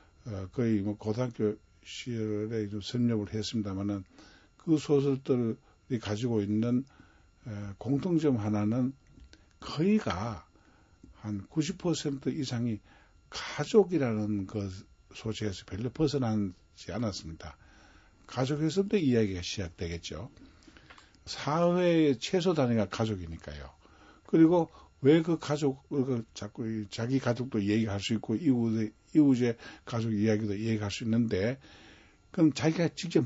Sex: male